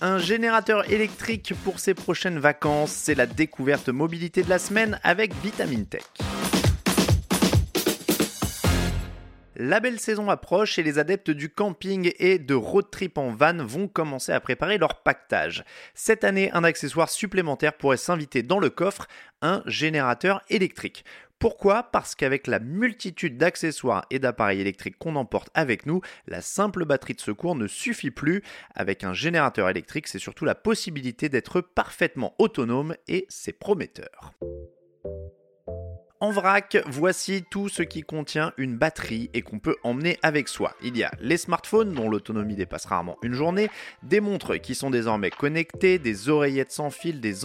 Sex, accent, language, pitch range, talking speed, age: male, French, French, 120-190 Hz, 155 wpm, 30-49